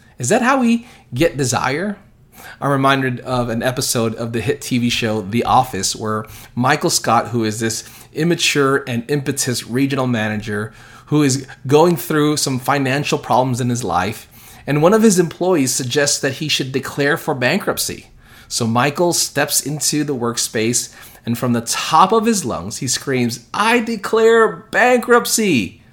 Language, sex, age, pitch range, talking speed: English, male, 30-49, 115-155 Hz, 160 wpm